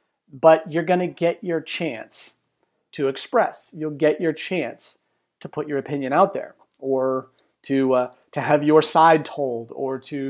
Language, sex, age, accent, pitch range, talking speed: English, male, 30-49, American, 130-155 Hz, 170 wpm